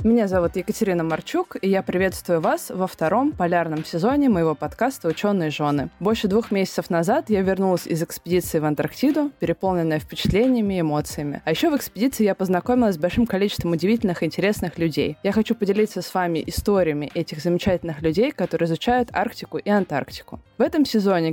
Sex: female